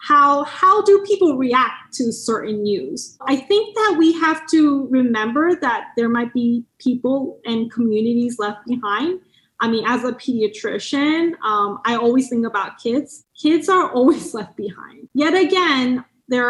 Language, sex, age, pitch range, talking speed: English, female, 20-39, 230-305 Hz, 155 wpm